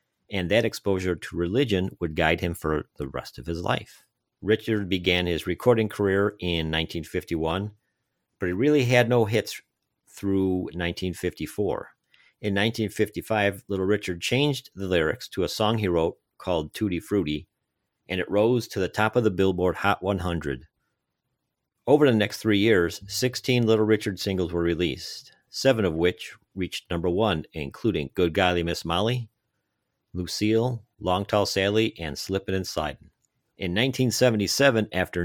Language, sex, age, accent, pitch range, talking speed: English, male, 50-69, American, 90-110 Hz, 150 wpm